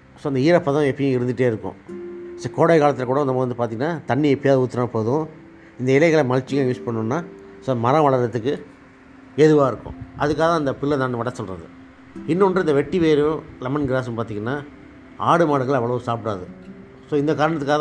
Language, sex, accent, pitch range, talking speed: Tamil, male, native, 110-140 Hz, 165 wpm